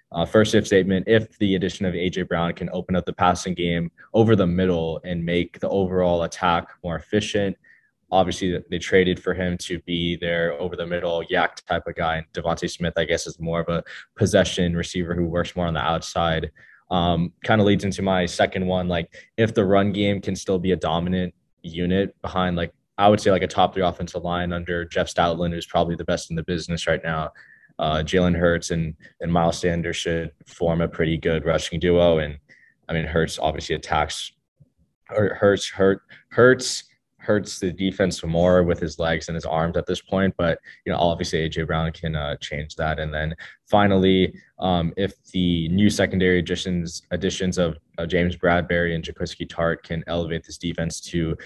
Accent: American